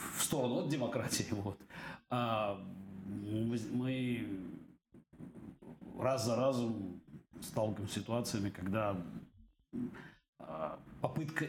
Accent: native